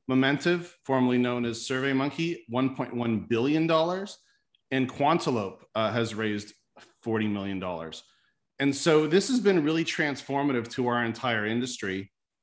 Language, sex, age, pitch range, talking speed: English, male, 40-59, 115-140 Hz, 120 wpm